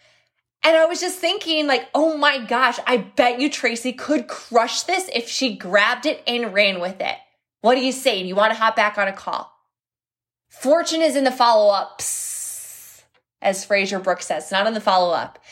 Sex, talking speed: female, 195 wpm